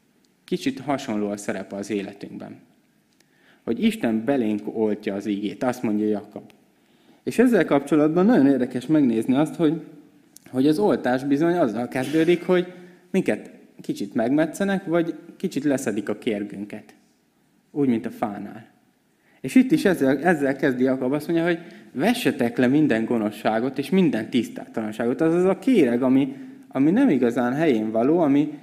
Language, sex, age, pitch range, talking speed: Hungarian, male, 20-39, 110-175 Hz, 145 wpm